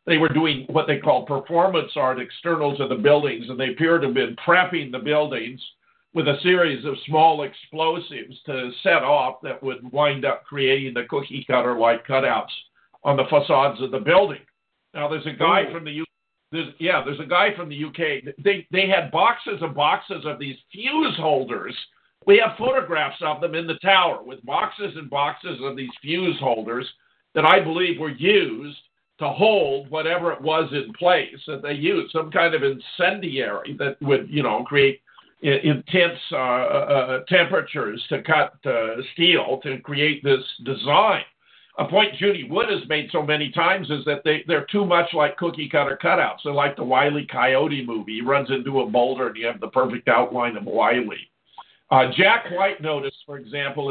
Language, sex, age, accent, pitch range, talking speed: English, male, 50-69, American, 135-170 Hz, 180 wpm